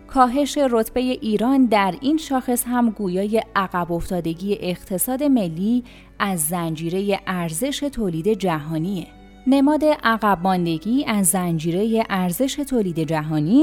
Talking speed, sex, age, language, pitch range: 105 wpm, female, 30-49, Persian, 175-235 Hz